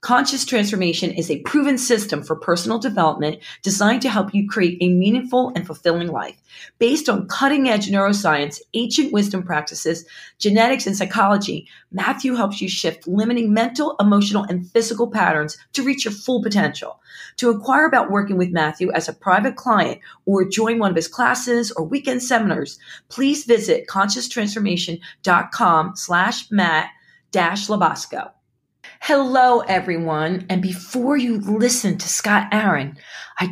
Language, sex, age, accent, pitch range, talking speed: English, female, 40-59, American, 180-240 Hz, 145 wpm